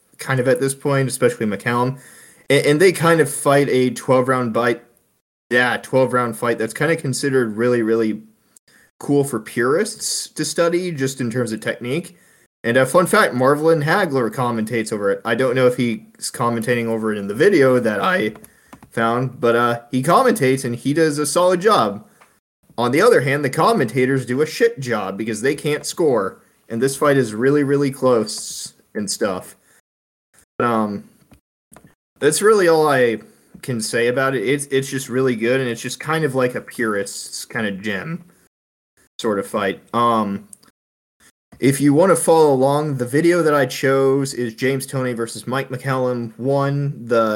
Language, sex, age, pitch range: English, male, 20-39, 115-140 Hz